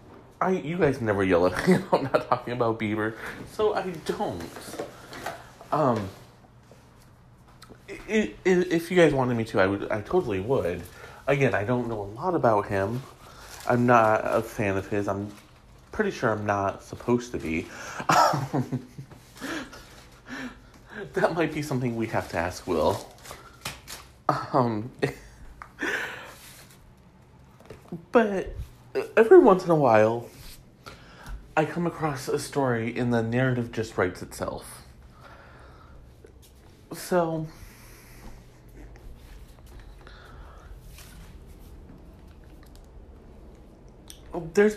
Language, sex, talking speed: English, male, 110 wpm